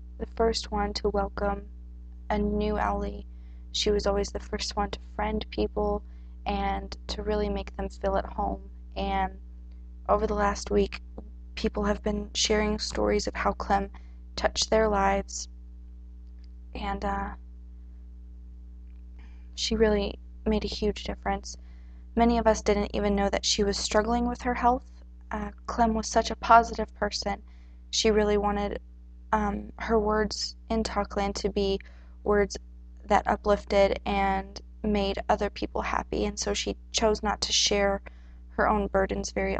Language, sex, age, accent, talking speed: English, female, 20-39, American, 150 wpm